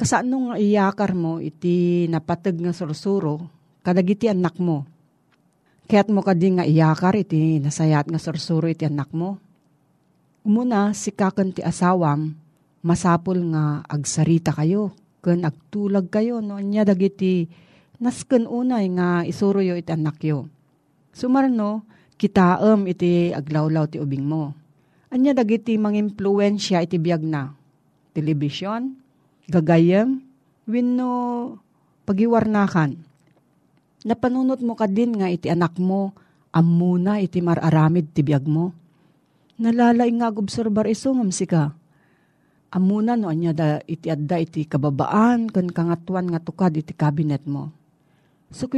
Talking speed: 125 wpm